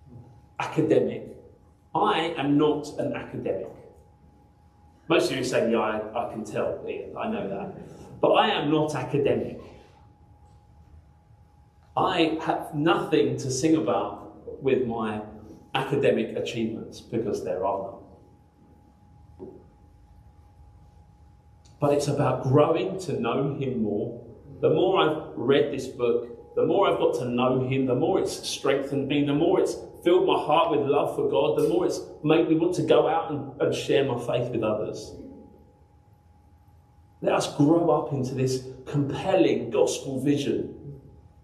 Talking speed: 140 wpm